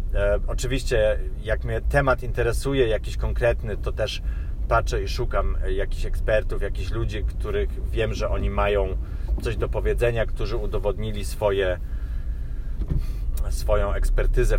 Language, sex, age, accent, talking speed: Polish, male, 30-49, native, 115 wpm